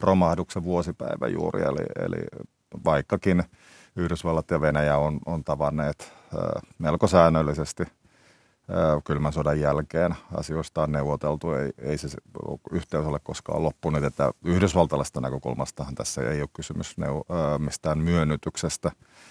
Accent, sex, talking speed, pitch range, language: native, male, 110 wpm, 75-85 Hz, Finnish